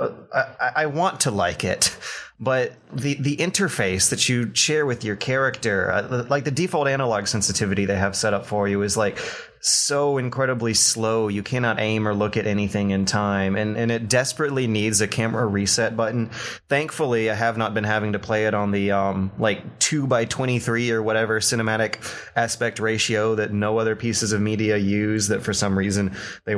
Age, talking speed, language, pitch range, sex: 30-49, 185 wpm, English, 105-130 Hz, male